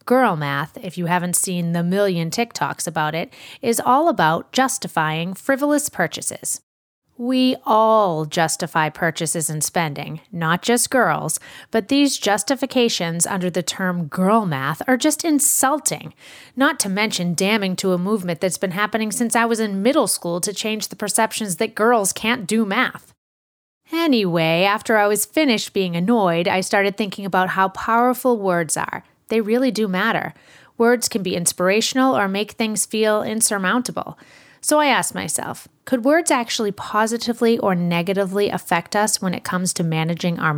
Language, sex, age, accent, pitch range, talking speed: English, female, 30-49, American, 180-245 Hz, 160 wpm